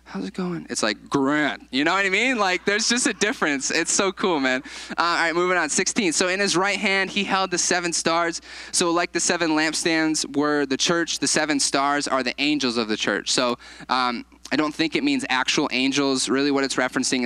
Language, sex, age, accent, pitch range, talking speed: English, male, 20-39, American, 125-170 Hz, 230 wpm